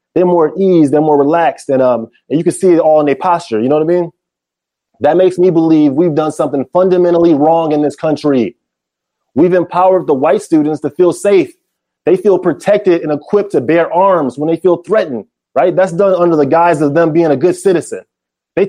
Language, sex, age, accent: English, male, 30-49, American